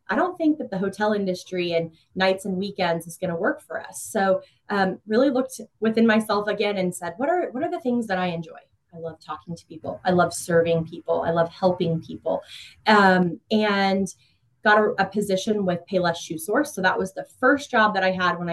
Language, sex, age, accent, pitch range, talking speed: English, female, 20-39, American, 170-205 Hz, 220 wpm